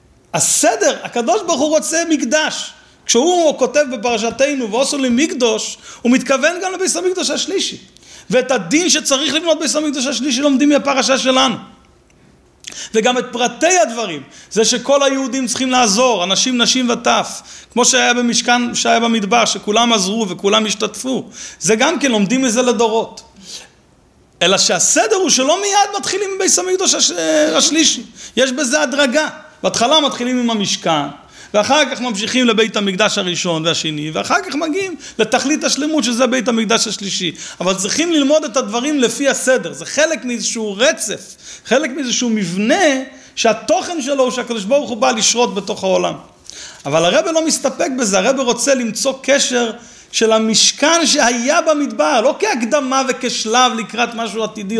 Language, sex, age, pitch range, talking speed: English, male, 40-59, 225-295 Hz, 130 wpm